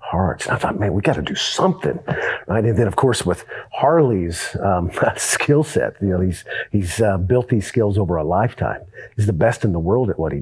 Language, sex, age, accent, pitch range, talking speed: English, male, 40-59, American, 95-125 Hz, 225 wpm